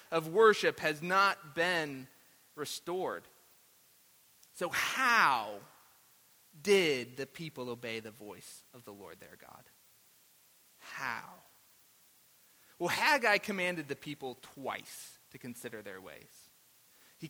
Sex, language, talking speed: male, English, 110 wpm